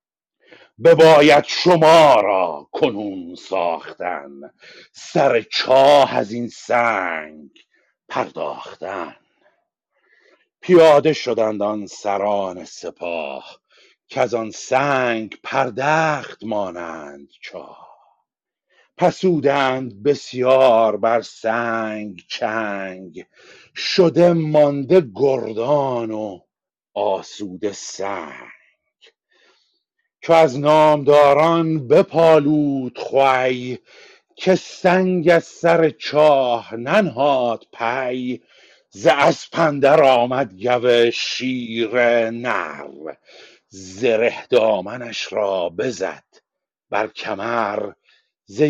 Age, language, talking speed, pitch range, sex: 50-69, Persian, 75 wpm, 115-160 Hz, male